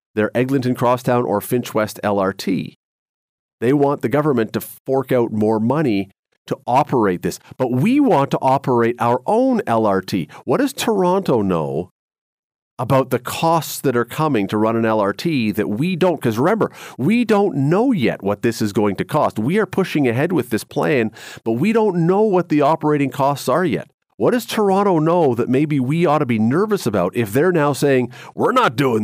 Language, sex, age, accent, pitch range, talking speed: English, male, 40-59, American, 115-155 Hz, 190 wpm